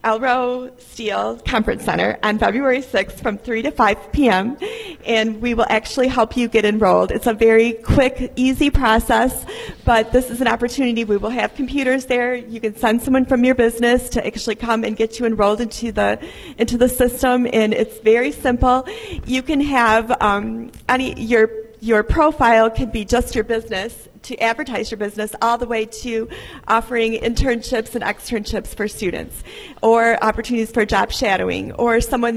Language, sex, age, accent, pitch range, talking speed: English, female, 40-59, American, 220-250 Hz, 175 wpm